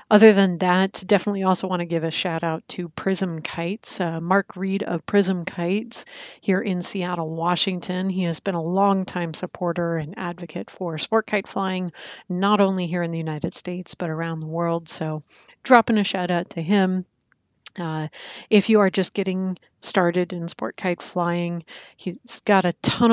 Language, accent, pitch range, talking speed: English, American, 170-195 Hz, 180 wpm